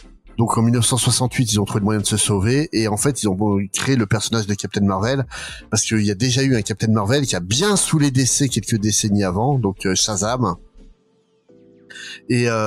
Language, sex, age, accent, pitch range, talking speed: French, male, 30-49, French, 105-130 Hz, 215 wpm